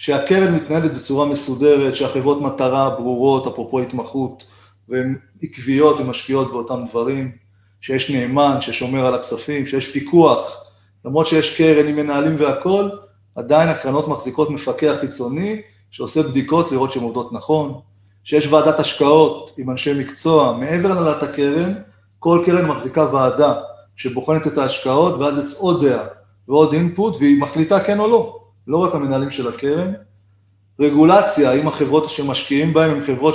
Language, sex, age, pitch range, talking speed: Hebrew, male, 30-49, 125-155 Hz, 140 wpm